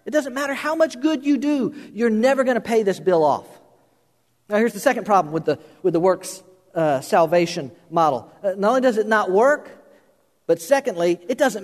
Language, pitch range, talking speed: English, 185-275 Hz, 205 wpm